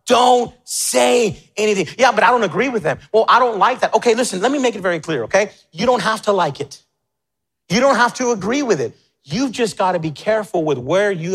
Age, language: 30-49, English